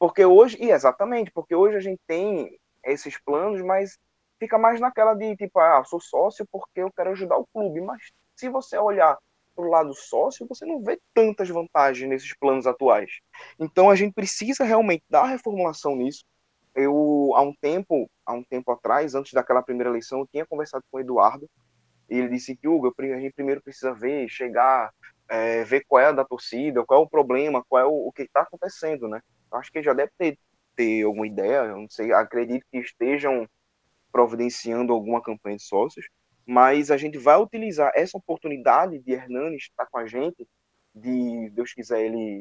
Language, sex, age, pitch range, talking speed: Portuguese, male, 20-39, 125-180 Hz, 190 wpm